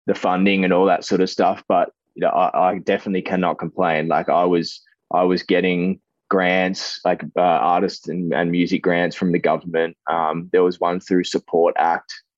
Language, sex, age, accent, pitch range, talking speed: English, male, 20-39, Australian, 85-95 Hz, 195 wpm